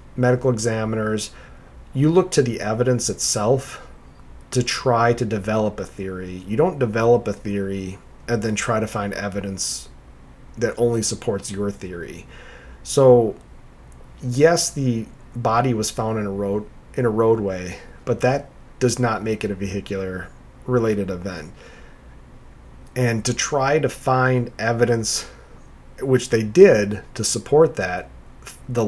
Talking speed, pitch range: 135 wpm, 100-125 Hz